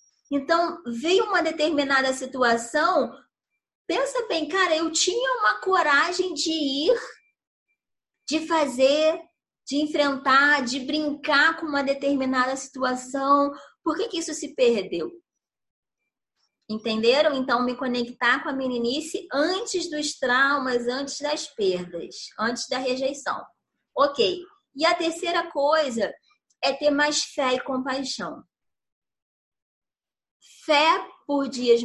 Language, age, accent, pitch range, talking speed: Portuguese, 20-39, Brazilian, 235-305 Hz, 115 wpm